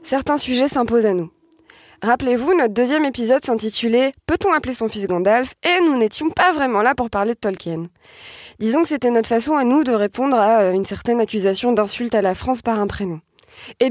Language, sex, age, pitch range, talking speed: French, female, 20-39, 200-255 Hz, 200 wpm